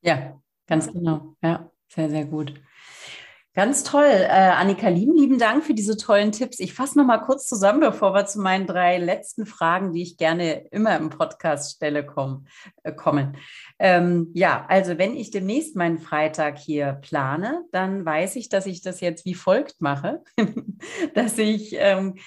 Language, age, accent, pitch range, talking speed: German, 40-59, German, 155-205 Hz, 170 wpm